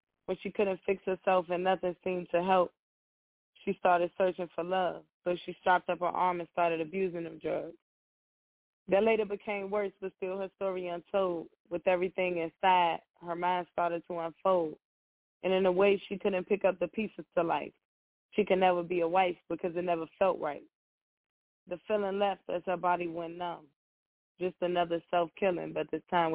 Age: 20-39